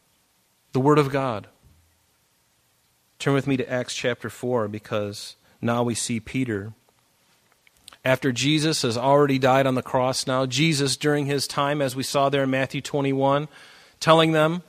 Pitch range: 120-150 Hz